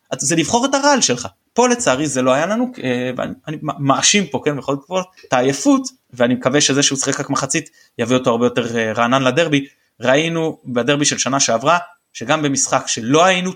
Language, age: Hebrew, 20-39